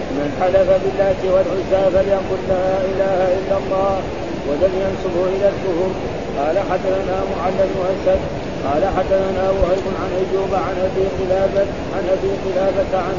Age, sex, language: 50-69, male, Arabic